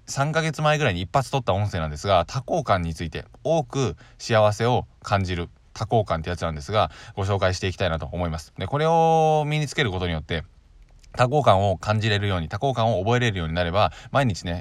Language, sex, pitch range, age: Japanese, male, 90-125 Hz, 20-39